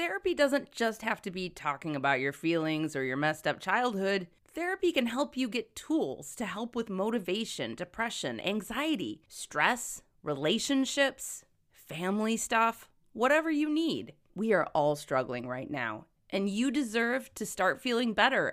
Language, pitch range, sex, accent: English, 170-265 Hz, female, American